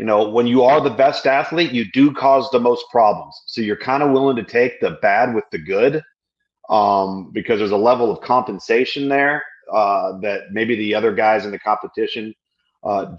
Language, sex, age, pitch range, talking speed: English, male, 40-59, 115-170 Hz, 200 wpm